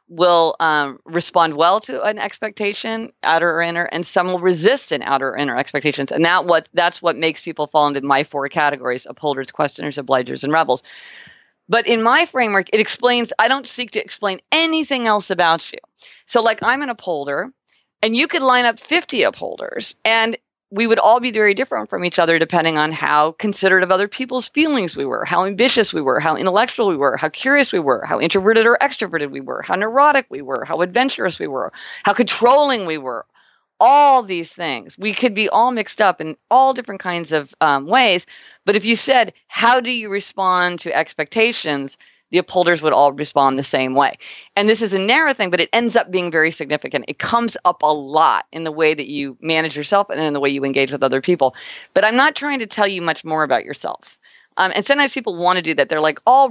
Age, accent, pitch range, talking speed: 40-59, American, 155-235 Hz, 215 wpm